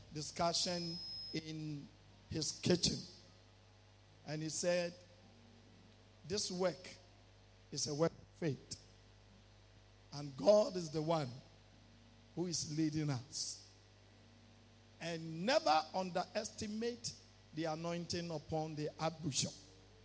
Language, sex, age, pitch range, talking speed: English, male, 50-69, 110-180 Hz, 90 wpm